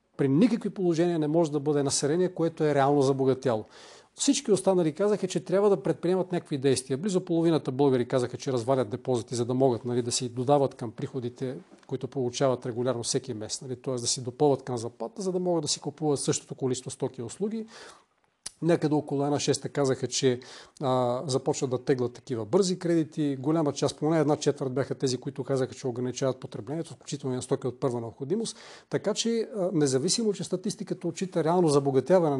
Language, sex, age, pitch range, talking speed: Bulgarian, male, 40-59, 135-180 Hz, 185 wpm